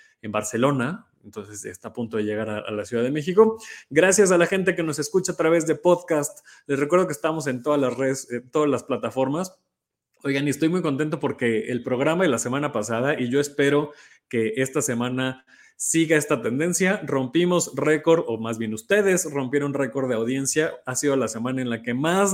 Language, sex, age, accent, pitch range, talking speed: Spanish, male, 20-39, Mexican, 120-155 Hz, 205 wpm